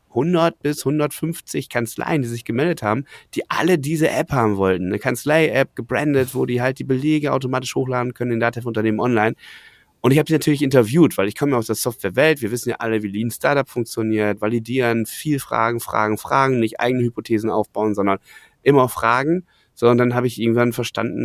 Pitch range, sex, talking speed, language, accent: 110-130 Hz, male, 200 wpm, German, German